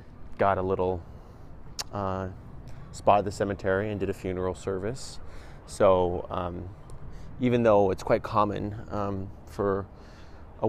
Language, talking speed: English, 130 wpm